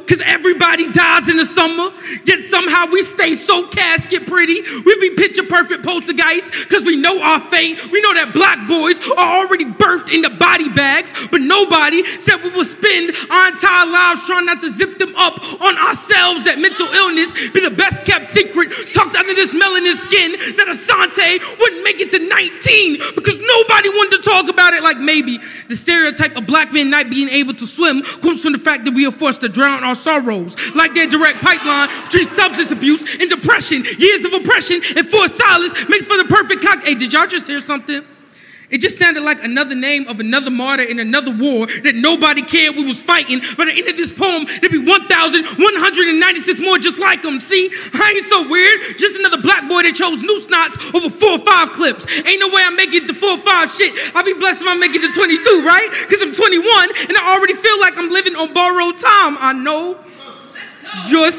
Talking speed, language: 205 wpm, English